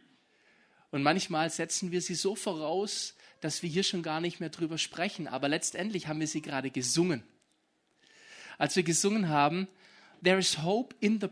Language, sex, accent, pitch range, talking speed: German, male, German, 175-230 Hz, 170 wpm